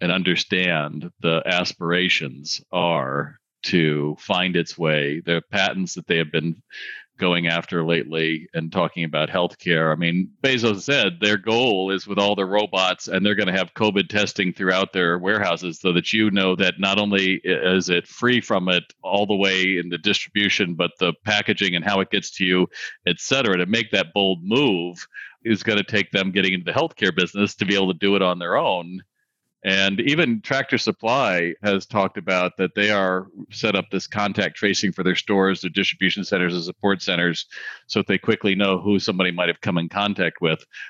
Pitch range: 90-105 Hz